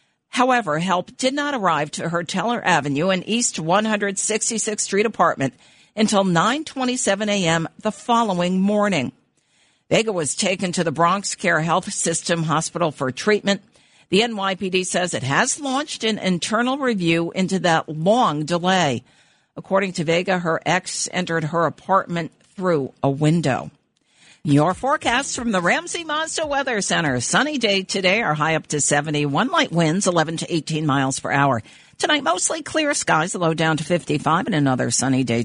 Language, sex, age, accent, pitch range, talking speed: English, female, 50-69, American, 155-230 Hz, 155 wpm